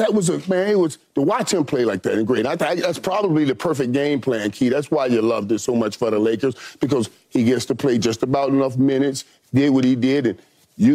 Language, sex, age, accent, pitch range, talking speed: English, male, 40-59, American, 130-185 Hz, 260 wpm